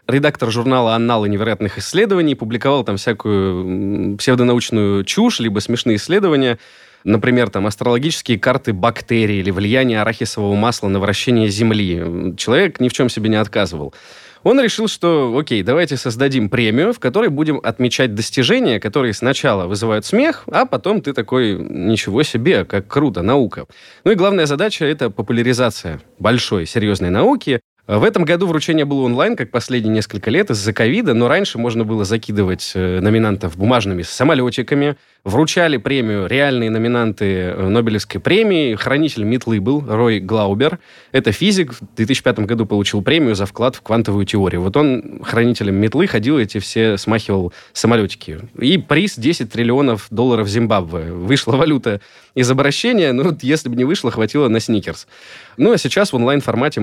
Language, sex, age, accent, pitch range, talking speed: Russian, male, 20-39, native, 105-130 Hz, 150 wpm